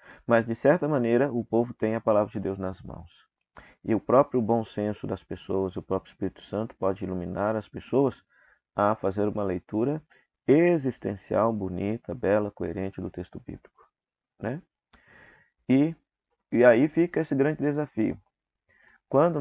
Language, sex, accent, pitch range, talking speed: Portuguese, male, Brazilian, 95-120 Hz, 150 wpm